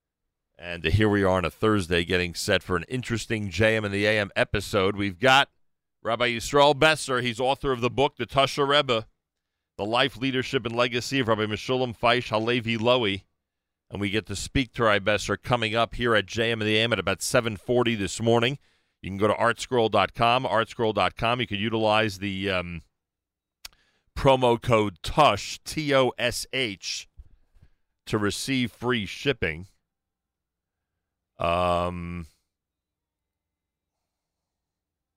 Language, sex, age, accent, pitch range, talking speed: English, male, 40-59, American, 85-115 Hz, 145 wpm